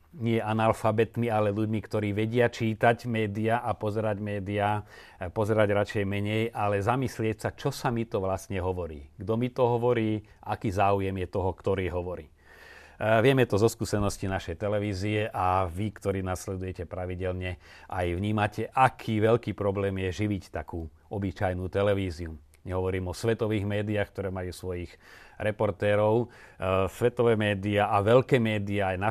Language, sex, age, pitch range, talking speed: Slovak, male, 40-59, 95-115 Hz, 145 wpm